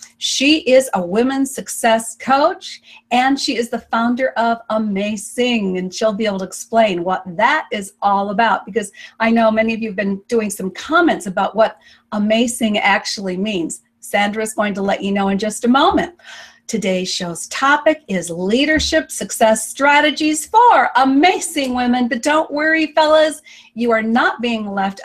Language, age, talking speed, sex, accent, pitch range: English, 40-59, 165 wpm, female, American, 205-270 Hz